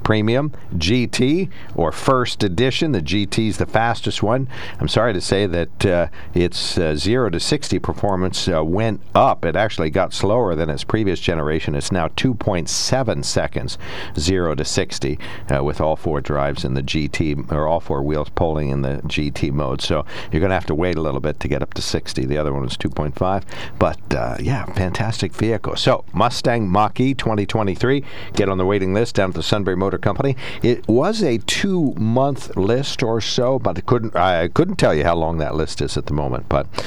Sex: male